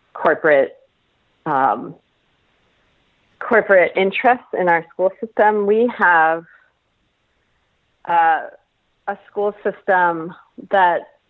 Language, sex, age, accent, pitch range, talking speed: English, female, 40-59, American, 165-210 Hz, 80 wpm